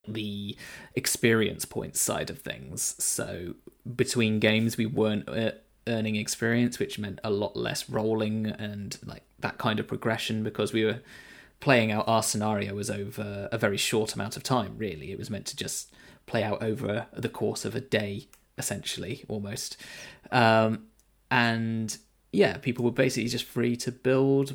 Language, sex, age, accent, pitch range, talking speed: English, male, 20-39, British, 105-120 Hz, 160 wpm